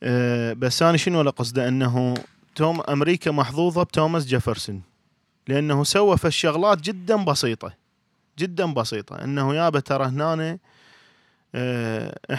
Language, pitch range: Arabic, 130-165 Hz